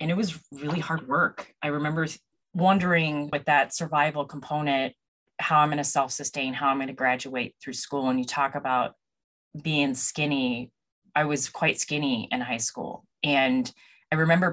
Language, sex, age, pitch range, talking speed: English, female, 30-49, 130-155 Hz, 175 wpm